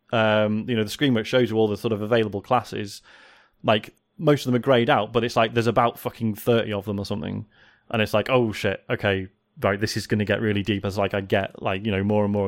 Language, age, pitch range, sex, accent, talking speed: English, 20-39, 105-125 Hz, male, British, 270 wpm